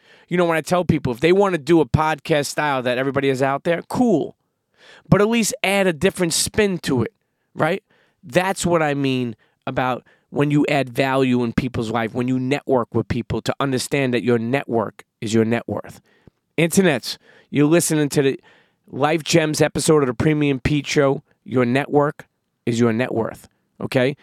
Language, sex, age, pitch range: English, male, 30-49, 125-160 Hz